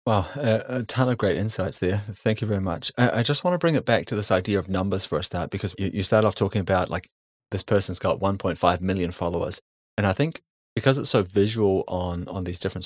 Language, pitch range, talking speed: English, 95-115 Hz, 240 wpm